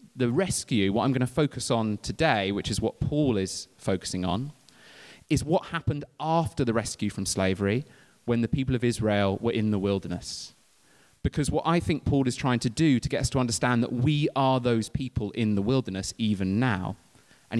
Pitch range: 100-130 Hz